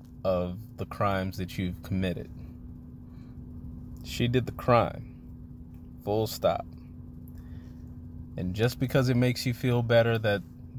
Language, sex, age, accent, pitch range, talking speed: English, male, 30-49, American, 95-120 Hz, 115 wpm